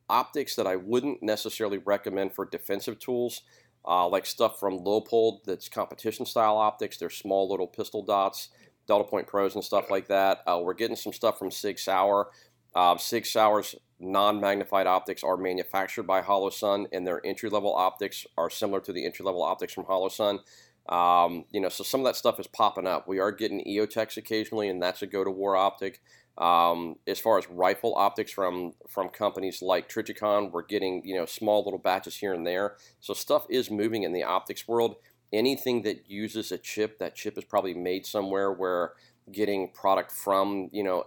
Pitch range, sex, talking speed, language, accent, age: 95-110 Hz, male, 180 wpm, English, American, 40-59